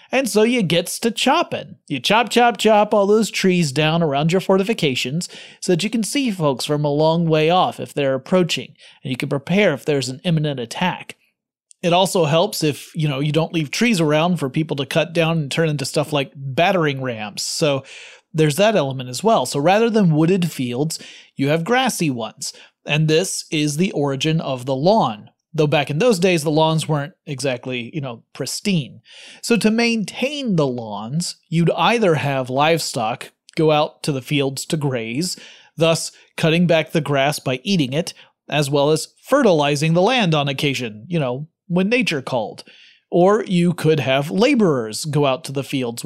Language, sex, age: English, male, 30-49